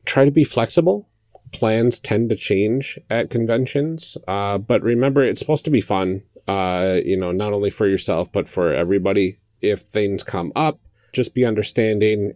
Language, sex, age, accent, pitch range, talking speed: English, male, 30-49, American, 100-135 Hz, 170 wpm